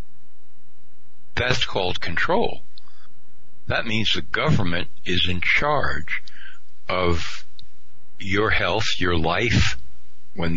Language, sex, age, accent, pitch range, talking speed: English, male, 60-79, American, 85-100 Hz, 90 wpm